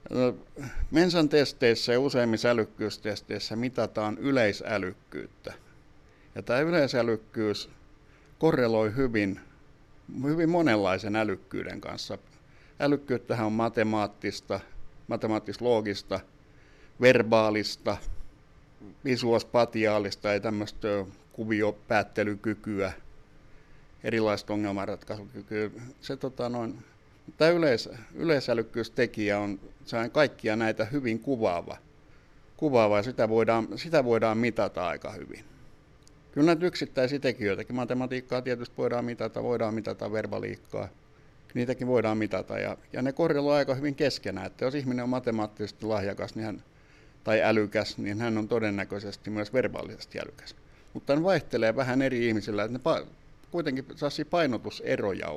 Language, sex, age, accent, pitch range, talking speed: Finnish, male, 60-79, native, 105-135 Hz, 105 wpm